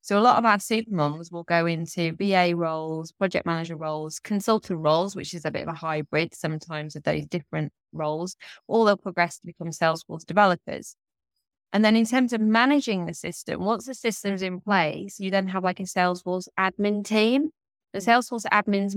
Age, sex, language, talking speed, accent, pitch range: 20-39, female, English, 185 wpm, British, 175-200 Hz